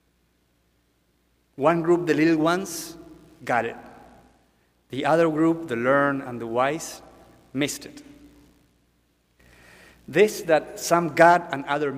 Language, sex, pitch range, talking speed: English, male, 120-170 Hz, 115 wpm